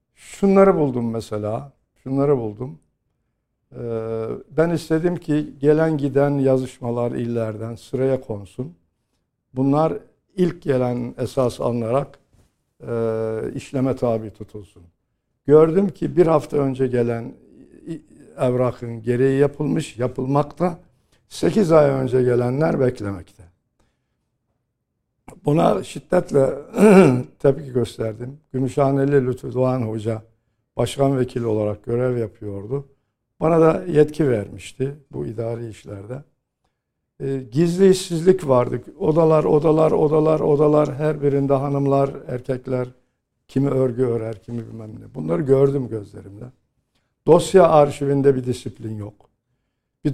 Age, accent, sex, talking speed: 60-79, native, male, 100 wpm